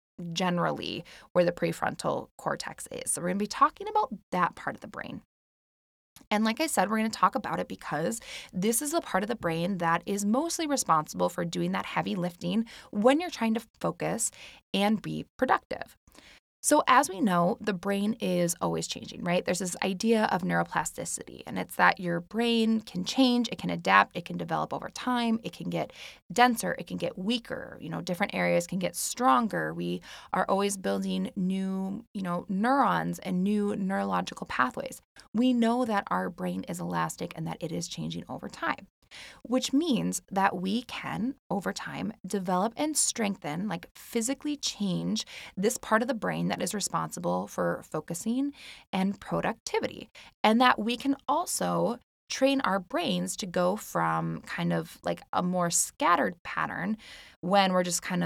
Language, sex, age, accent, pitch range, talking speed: English, female, 20-39, American, 175-235 Hz, 175 wpm